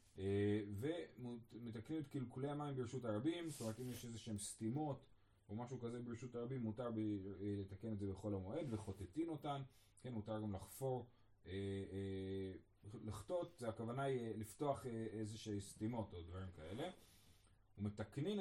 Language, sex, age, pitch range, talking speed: Hebrew, male, 30-49, 100-130 Hz, 130 wpm